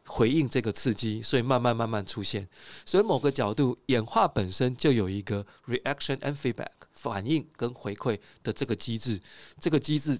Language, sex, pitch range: Chinese, male, 110-145 Hz